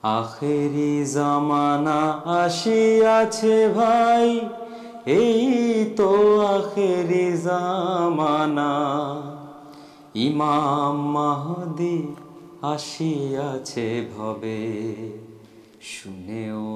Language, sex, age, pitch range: Urdu, male, 30-49, 115-175 Hz